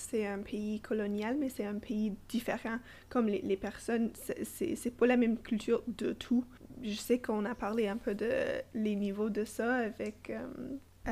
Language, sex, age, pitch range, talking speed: English, female, 20-39, 215-260 Hz, 195 wpm